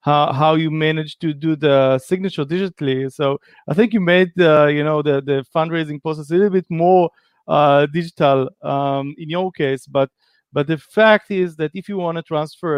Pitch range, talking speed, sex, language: 150-180 Hz, 195 wpm, male, English